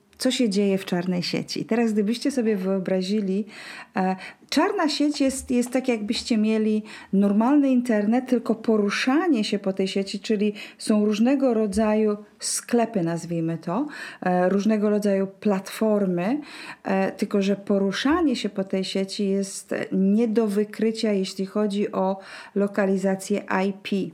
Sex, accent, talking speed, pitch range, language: female, native, 125 wpm, 195-230 Hz, Polish